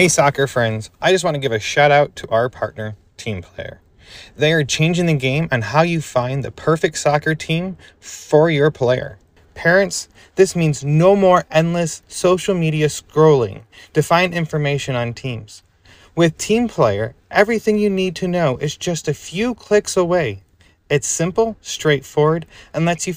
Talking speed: 170 wpm